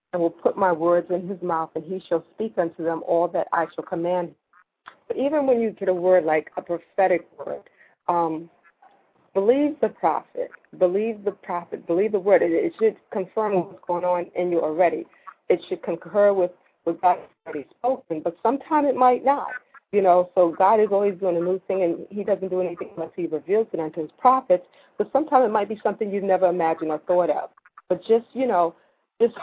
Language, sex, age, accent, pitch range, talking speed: English, female, 40-59, American, 170-210 Hz, 210 wpm